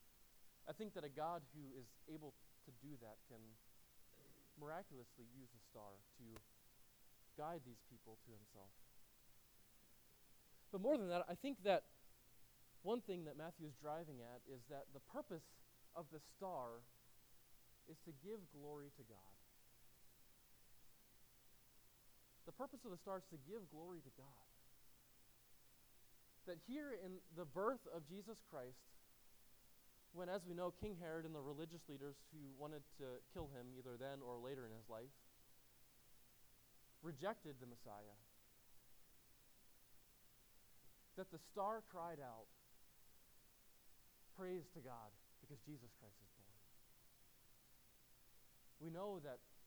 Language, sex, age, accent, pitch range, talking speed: English, male, 20-39, American, 120-170 Hz, 130 wpm